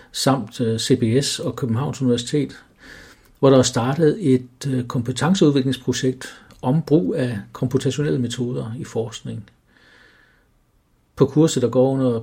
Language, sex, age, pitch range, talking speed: English, male, 60-79, 120-140 Hz, 115 wpm